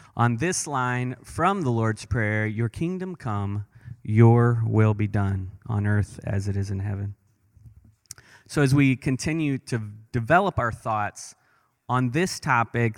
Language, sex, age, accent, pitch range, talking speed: English, male, 30-49, American, 105-130 Hz, 150 wpm